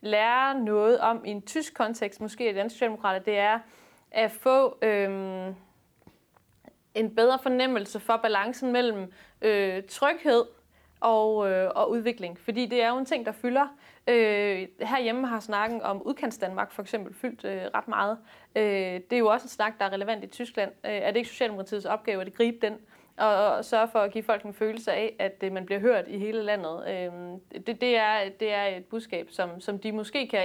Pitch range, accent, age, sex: 195-235 Hz, native, 30-49, female